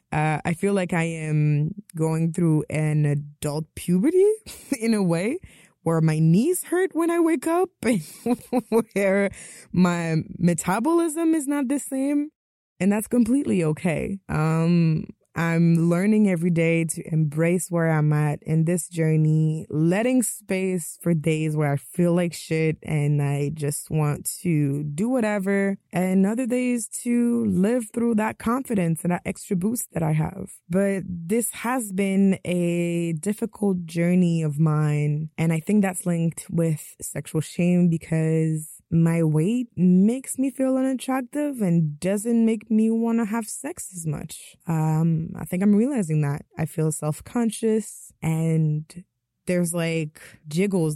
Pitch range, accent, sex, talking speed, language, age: 160-215 Hz, American, female, 145 wpm, English, 20-39